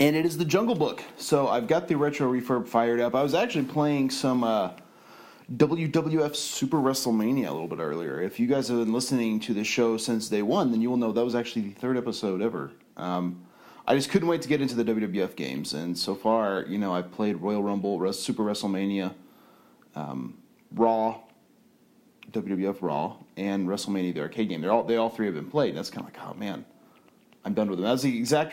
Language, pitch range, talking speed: English, 100-130 Hz, 215 wpm